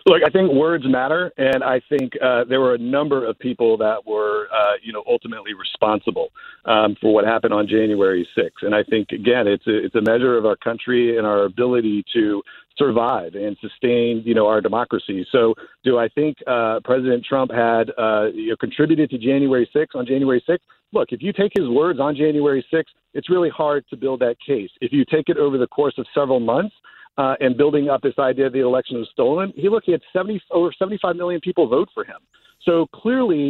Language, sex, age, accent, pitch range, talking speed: English, male, 50-69, American, 120-170 Hz, 210 wpm